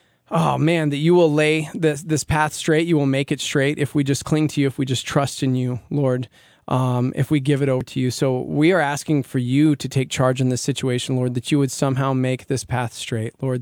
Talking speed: 255 wpm